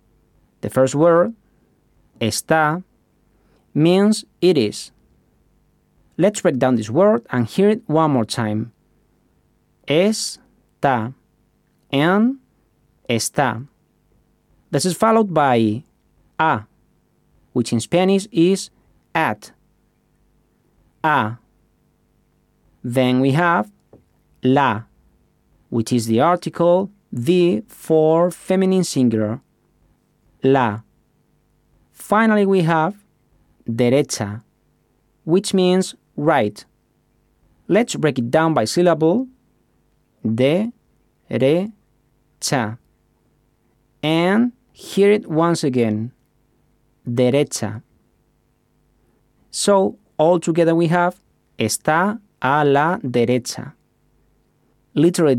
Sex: male